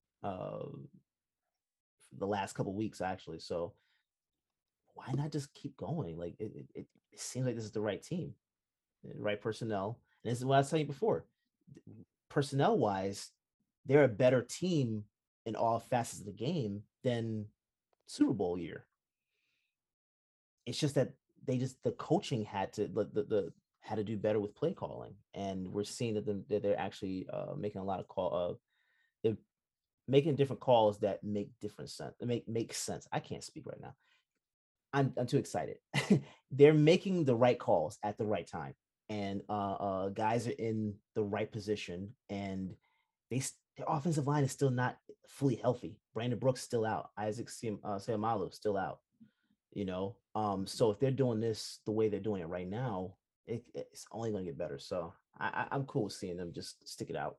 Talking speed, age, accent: 185 wpm, 30-49, American